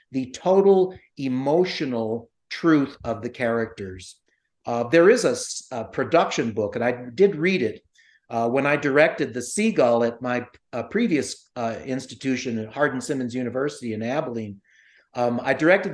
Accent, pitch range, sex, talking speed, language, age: American, 120-160 Hz, male, 145 wpm, English, 50-69